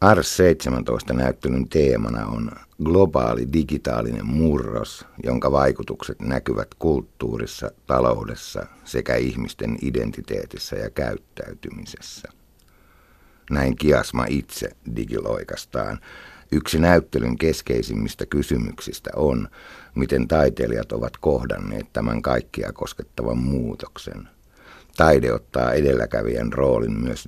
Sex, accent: male, native